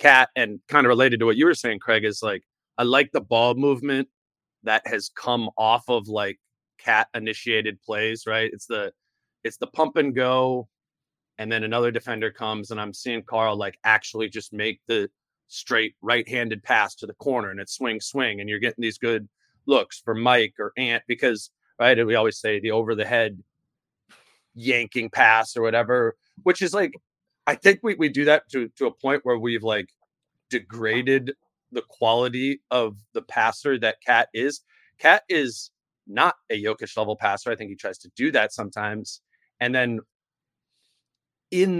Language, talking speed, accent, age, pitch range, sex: English, 180 wpm, American, 30-49, 110-135 Hz, male